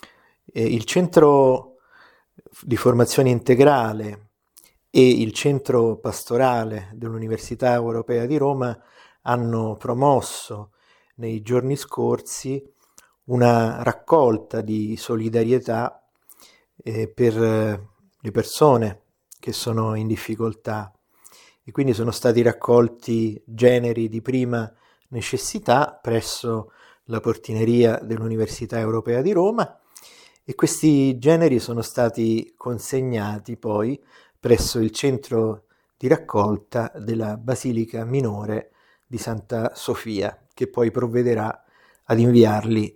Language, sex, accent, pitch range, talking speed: Italian, male, native, 110-130 Hz, 95 wpm